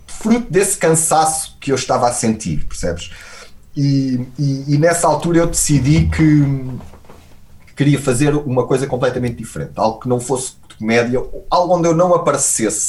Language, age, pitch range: Portuguese, 30-49, 105-155 Hz